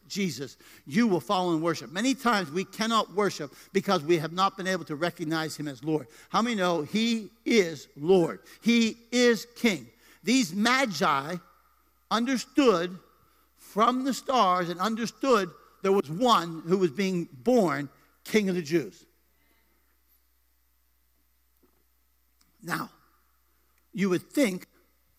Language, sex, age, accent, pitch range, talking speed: English, male, 50-69, American, 175-255 Hz, 130 wpm